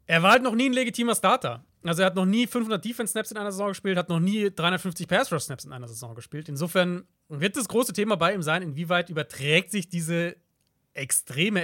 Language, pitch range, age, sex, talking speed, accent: German, 150-195 Hz, 30-49, male, 225 wpm, German